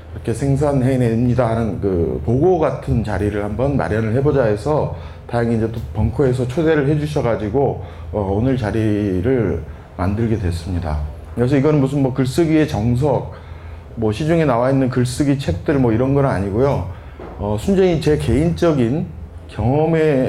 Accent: native